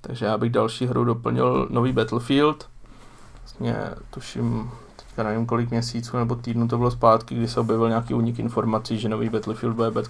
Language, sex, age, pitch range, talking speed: Czech, male, 20-39, 110-120 Hz, 180 wpm